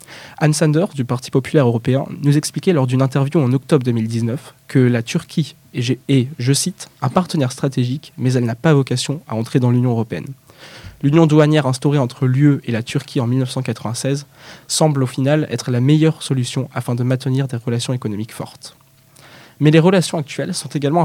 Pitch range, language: 125-155 Hz, French